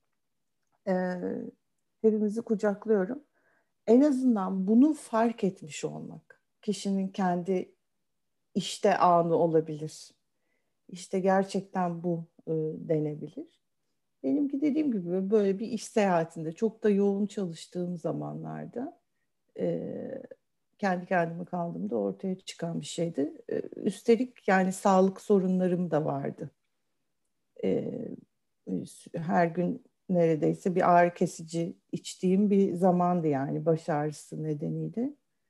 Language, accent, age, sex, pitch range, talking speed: Turkish, native, 60-79, female, 165-220 Hz, 100 wpm